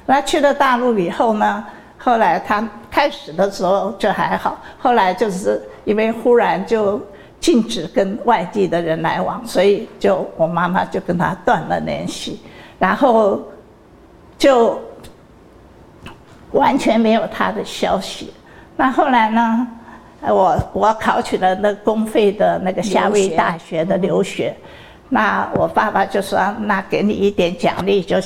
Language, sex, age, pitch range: Chinese, female, 50-69, 185-230 Hz